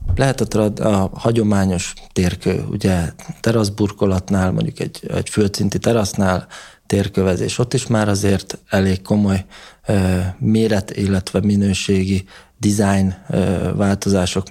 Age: 20-39